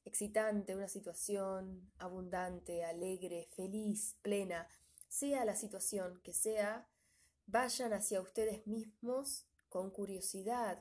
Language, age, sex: Spanish, 20-39, female